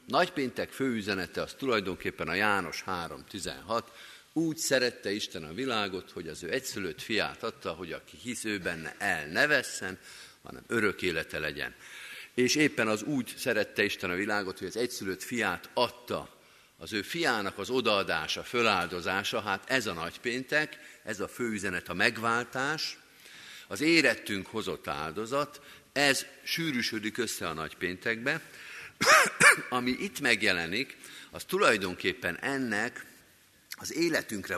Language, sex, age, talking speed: Hungarian, male, 50-69, 130 wpm